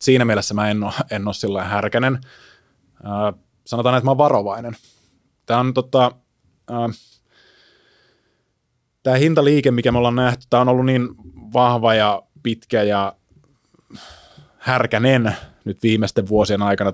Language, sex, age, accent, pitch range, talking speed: Finnish, male, 20-39, native, 100-125 Hz, 120 wpm